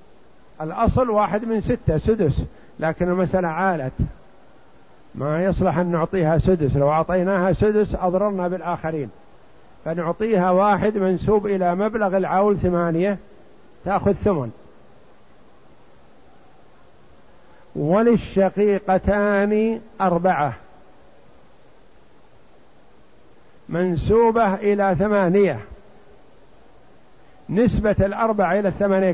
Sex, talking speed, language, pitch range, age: male, 75 wpm, Arabic, 170-205 Hz, 50-69